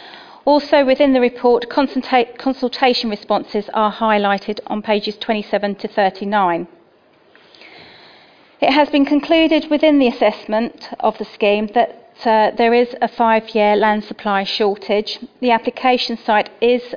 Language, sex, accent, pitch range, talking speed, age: English, female, British, 205-240 Hz, 125 wpm, 40-59